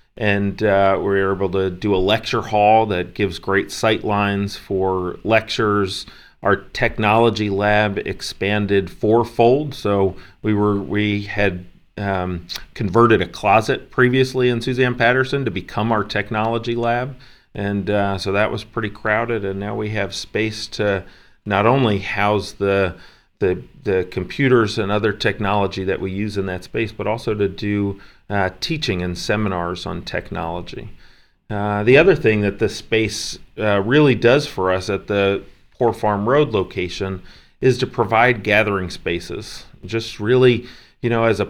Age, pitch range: 40-59, 100-115 Hz